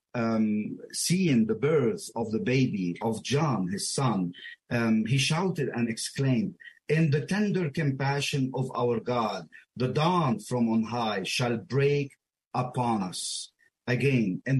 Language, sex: English, male